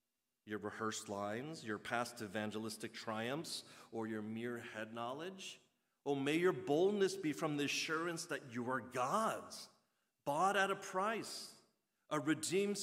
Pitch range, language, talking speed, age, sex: 110-175 Hz, English, 140 wpm, 40-59, male